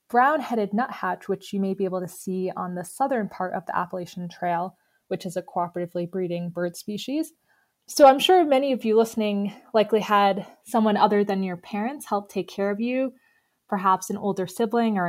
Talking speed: 190 wpm